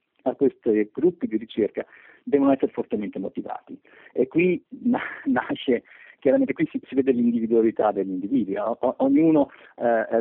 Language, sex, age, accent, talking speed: Italian, male, 50-69, native, 130 wpm